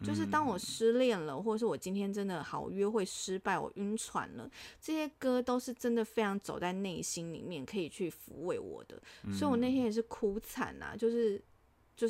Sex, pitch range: female, 185-240 Hz